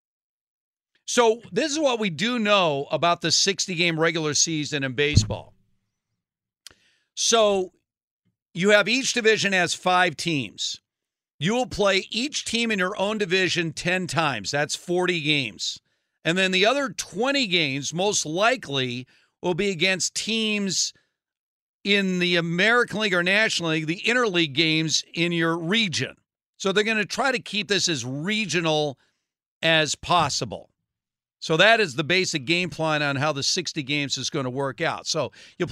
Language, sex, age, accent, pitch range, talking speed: English, male, 50-69, American, 145-195 Hz, 155 wpm